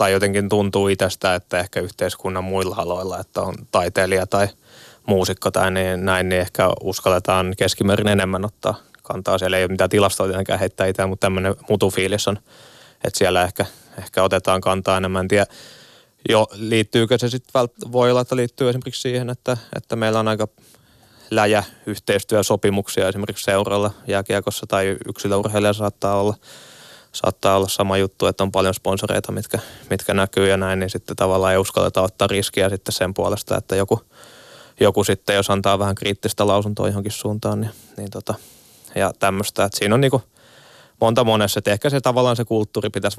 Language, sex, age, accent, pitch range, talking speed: Finnish, male, 20-39, native, 95-110 Hz, 170 wpm